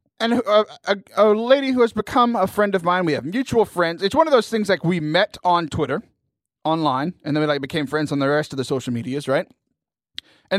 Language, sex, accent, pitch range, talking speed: English, male, American, 140-220 Hz, 240 wpm